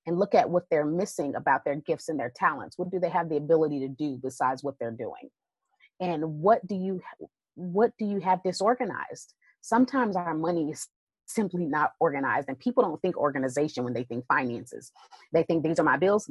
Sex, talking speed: female, 200 wpm